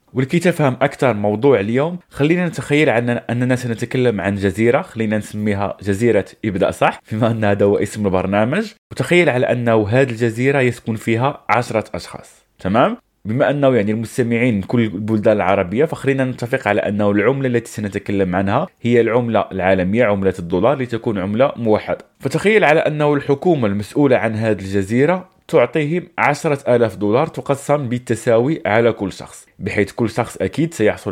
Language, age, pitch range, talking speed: Arabic, 20-39, 105-145 Hz, 150 wpm